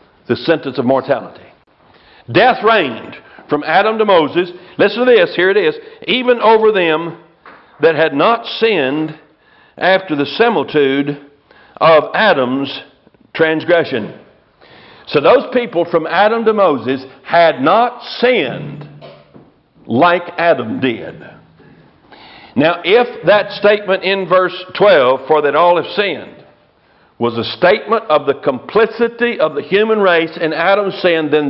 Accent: American